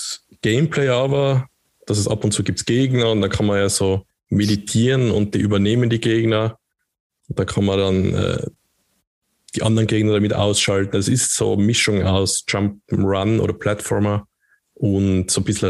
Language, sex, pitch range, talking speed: German, male, 100-115 Hz, 175 wpm